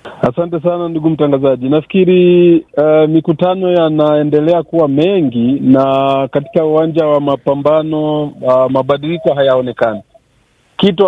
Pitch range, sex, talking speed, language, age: 145-180 Hz, male, 105 wpm, Swahili, 40-59